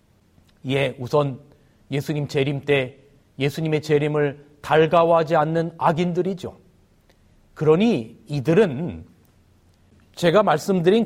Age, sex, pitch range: 40-59, male, 135-190 Hz